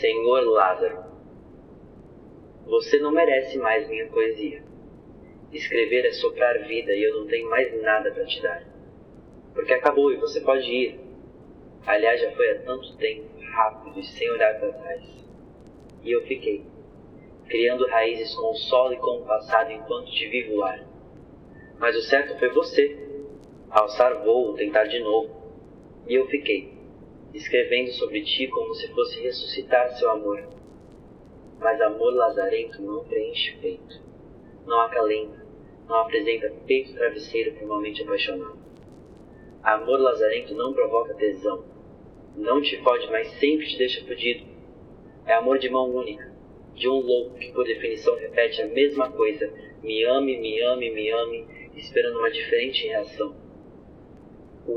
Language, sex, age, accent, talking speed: Portuguese, male, 20-39, Brazilian, 140 wpm